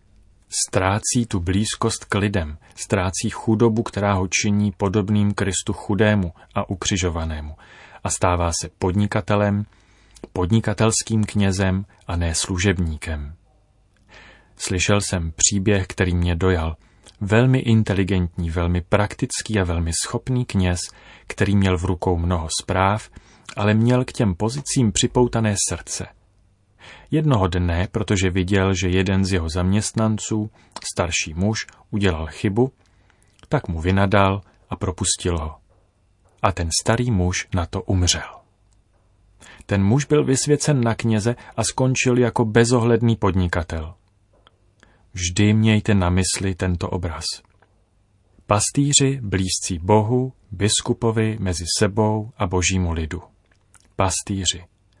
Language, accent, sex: Czech, native, male